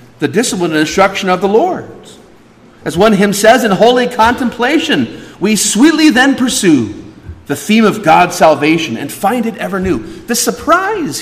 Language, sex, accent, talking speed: English, male, American, 160 wpm